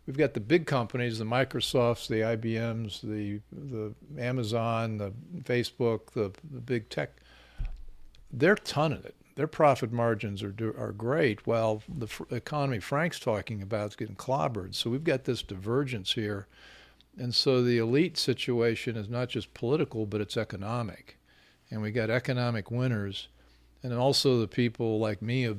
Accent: American